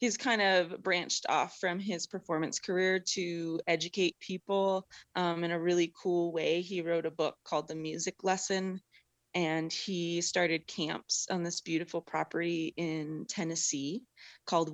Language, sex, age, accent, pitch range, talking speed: English, female, 20-39, American, 160-185 Hz, 150 wpm